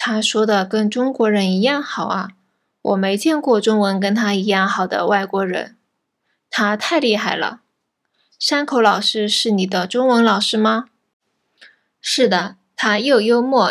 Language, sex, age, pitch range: Japanese, female, 20-39, 200-235 Hz